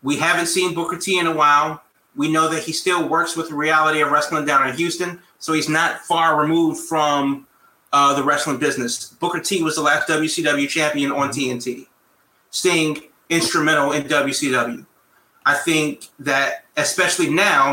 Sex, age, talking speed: male, 30-49, 170 wpm